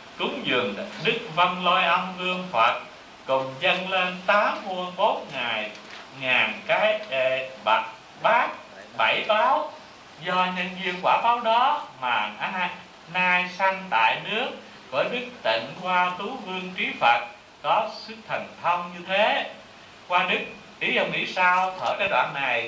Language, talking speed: Vietnamese, 150 wpm